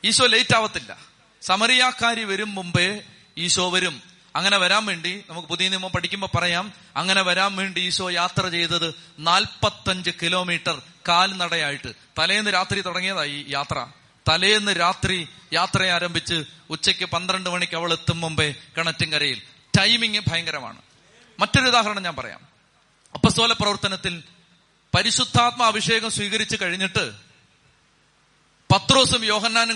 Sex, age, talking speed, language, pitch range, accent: male, 30-49, 110 wpm, Malayalam, 170-220 Hz, native